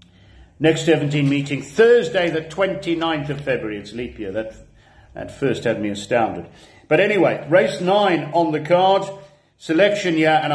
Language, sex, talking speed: English, male, 155 wpm